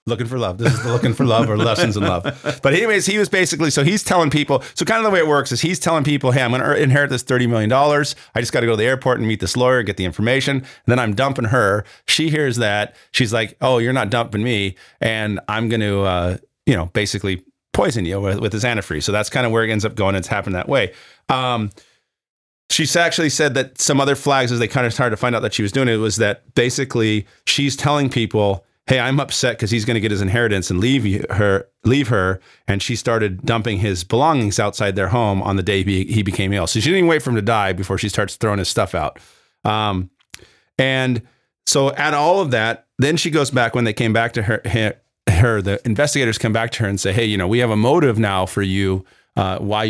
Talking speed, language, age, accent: 255 wpm, English, 40-59, American